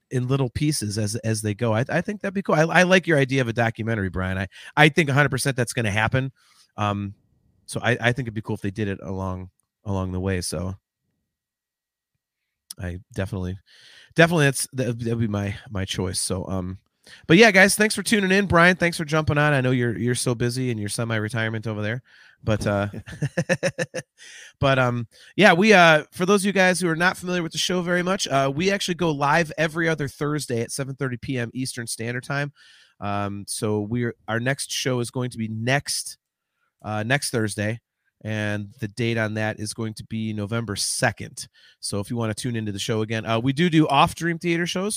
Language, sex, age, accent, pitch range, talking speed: English, male, 30-49, American, 110-145 Hz, 215 wpm